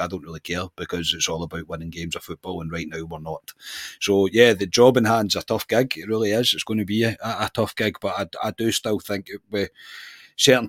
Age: 30-49